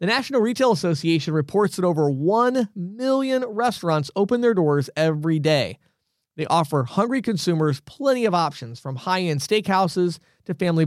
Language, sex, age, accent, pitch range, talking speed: English, male, 40-59, American, 155-210 Hz, 150 wpm